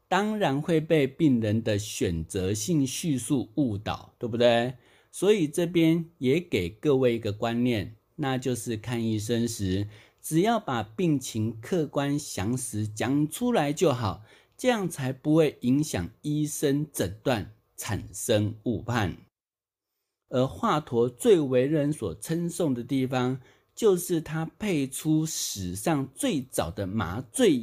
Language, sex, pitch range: Chinese, male, 110-155 Hz